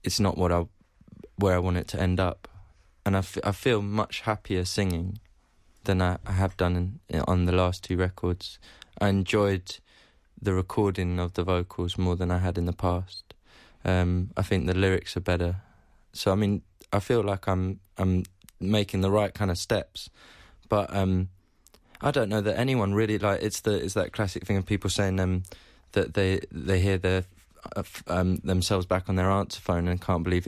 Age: 20-39